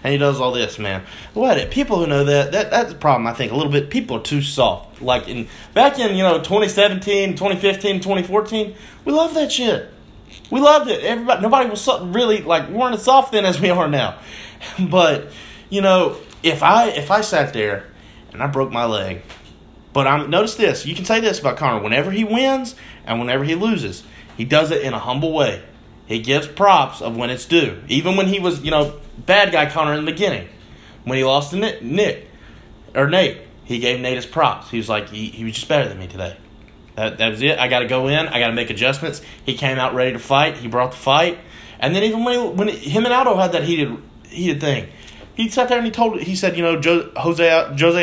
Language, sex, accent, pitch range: English, male, American, 125-195 Hz